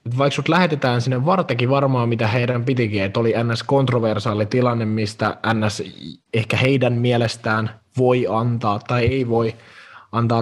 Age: 20-39